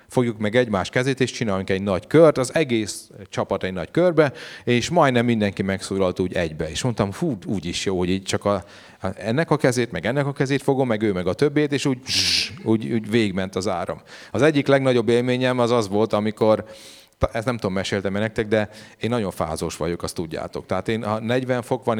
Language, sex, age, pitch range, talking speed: Hungarian, male, 30-49, 105-130 Hz, 205 wpm